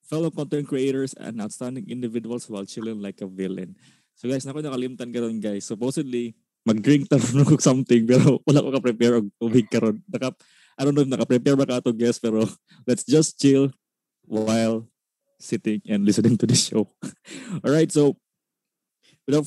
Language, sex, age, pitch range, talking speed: Filipino, male, 20-39, 110-140 Hz, 165 wpm